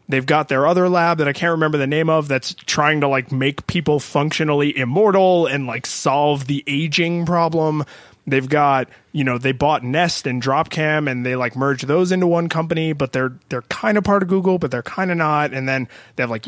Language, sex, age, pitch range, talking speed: English, male, 20-39, 130-165 Hz, 220 wpm